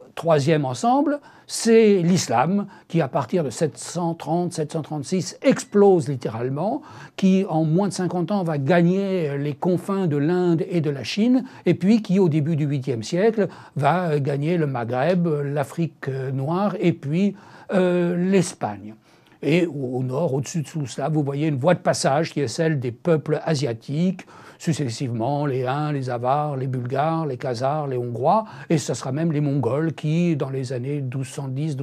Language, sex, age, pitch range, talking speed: French, male, 60-79, 140-180 Hz, 160 wpm